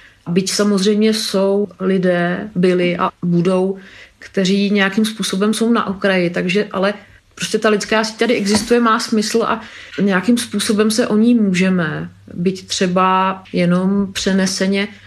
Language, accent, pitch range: Czech, native, 190-230 Hz